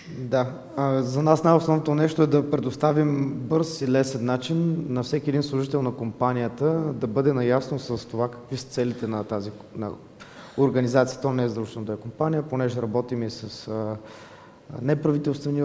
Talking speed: 165 wpm